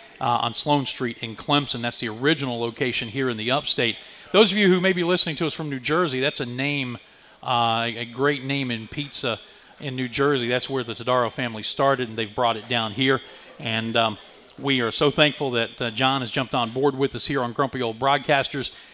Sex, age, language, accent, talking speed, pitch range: male, 40-59, English, American, 220 wpm, 120-145 Hz